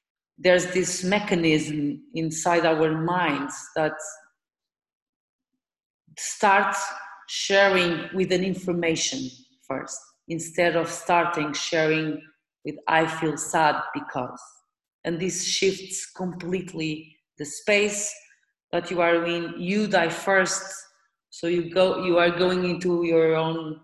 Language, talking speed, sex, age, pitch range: English, 110 wpm, female, 30-49, 160-185 Hz